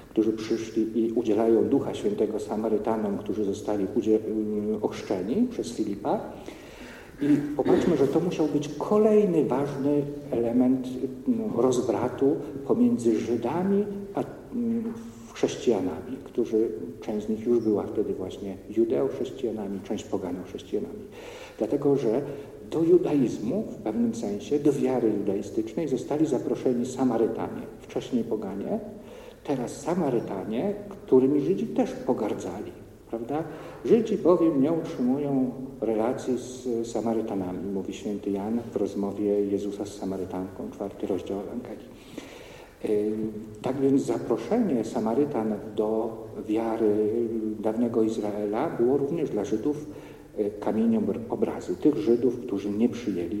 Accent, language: Polish, English